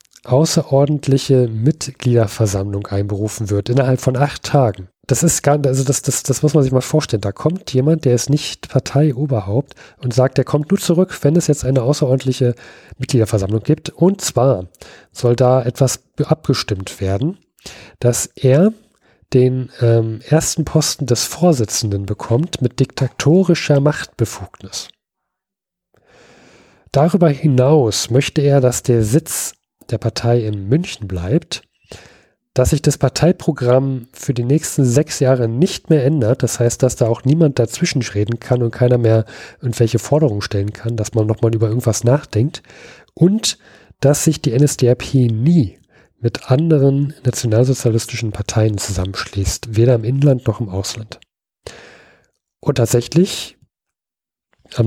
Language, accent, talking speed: German, German, 135 wpm